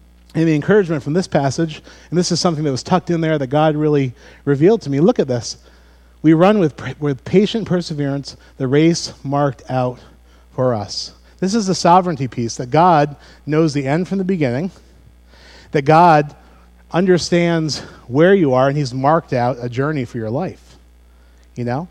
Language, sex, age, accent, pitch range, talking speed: English, male, 40-59, American, 100-155 Hz, 180 wpm